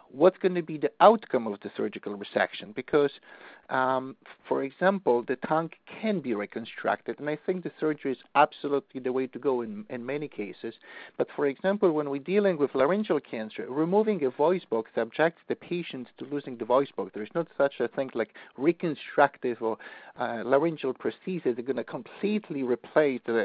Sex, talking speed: male, 185 wpm